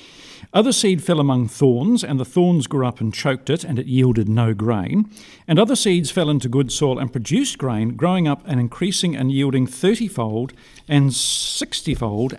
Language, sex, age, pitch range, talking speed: English, male, 50-69, 125-175 Hz, 180 wpm